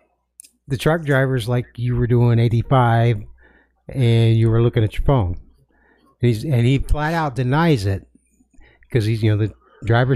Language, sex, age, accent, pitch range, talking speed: English, male, 60-79, American, 110-135 Hz, 170 wpm